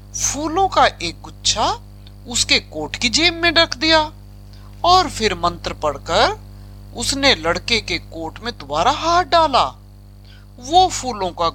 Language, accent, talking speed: Hindi, native, 135 wpm